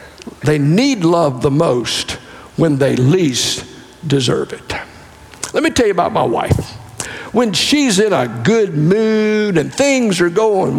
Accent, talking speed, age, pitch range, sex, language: American, 150 wpm, 60-79, 140-210 Hz, male, English